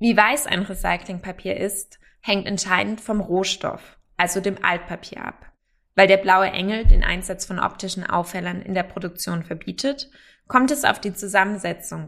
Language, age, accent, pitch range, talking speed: German, 20-39, German, 180-215 Hz, 155 wpm